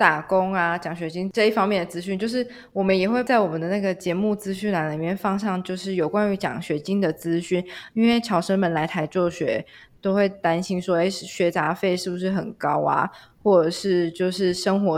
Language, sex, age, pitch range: Chinese, female, 20-39, 165-195 Hz